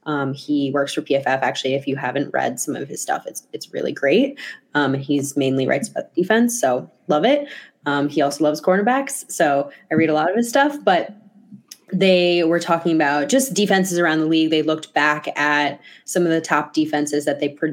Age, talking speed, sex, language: 20-39, 205 wpm, female, English